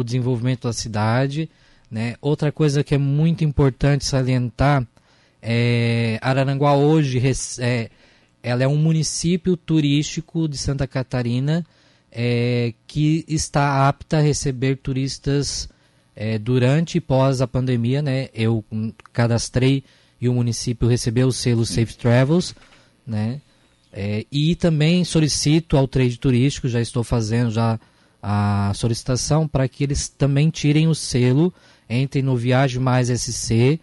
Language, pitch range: Portuguese, 120-150 Hz